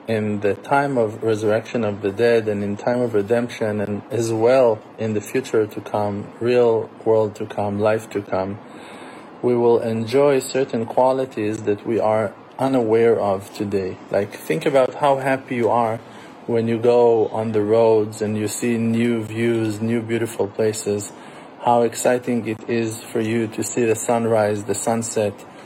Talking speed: 170 wpm